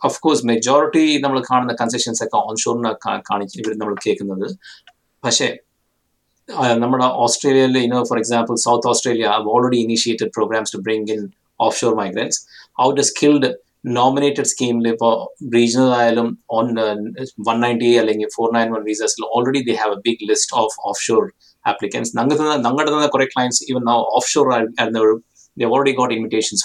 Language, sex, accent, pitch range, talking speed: Malayalam, male, native, 110-125 Hz, 140 wpm